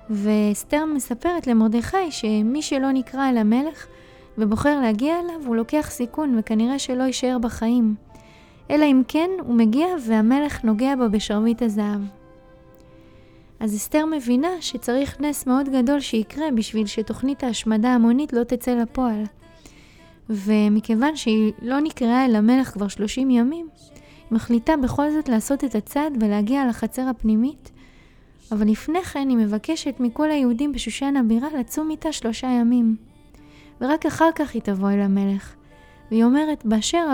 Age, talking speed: 20-39, 135 wpm